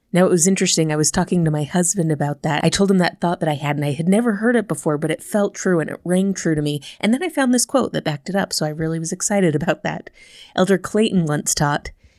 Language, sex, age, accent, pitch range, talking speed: English, female, 30-49, American, 155-195 Hz, 285 wpm